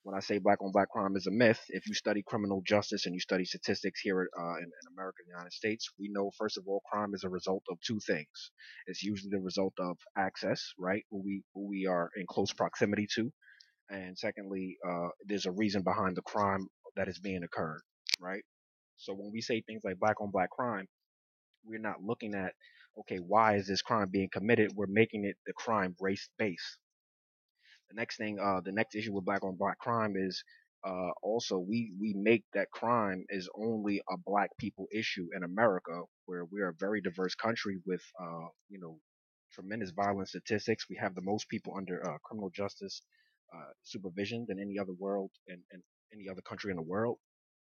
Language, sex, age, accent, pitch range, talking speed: English, male, 20-39, American, 95-105 Hz, 195 wpm